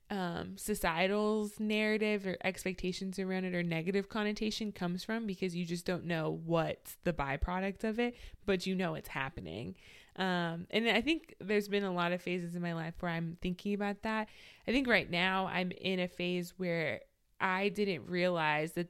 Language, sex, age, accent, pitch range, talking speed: English, female, 20-39, American, 170-200 Hz, 185 wpm